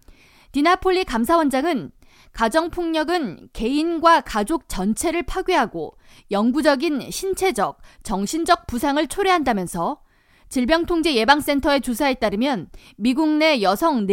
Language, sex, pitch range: Korean, female, 240-335 Hz